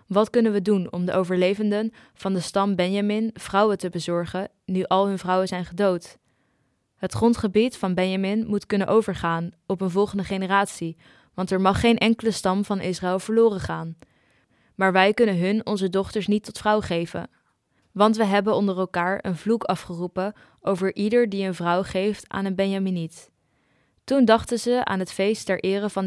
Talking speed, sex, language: 175 wpm, female, Dutch